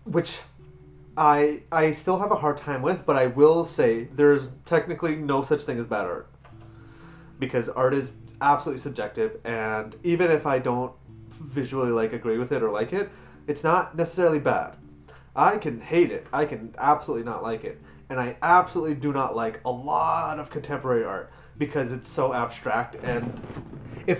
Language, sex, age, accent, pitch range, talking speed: English, male, 30-49, American, 120-165 Hz, 175 wpm